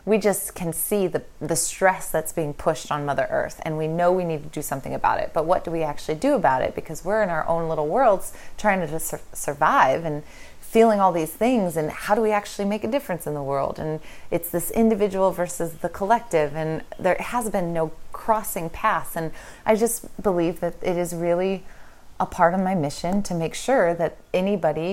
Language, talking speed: English, 215 wpm